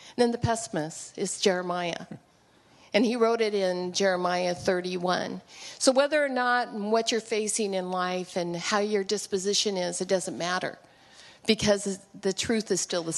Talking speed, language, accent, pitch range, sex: 160 wpm, English, American, 190-235 Hz, female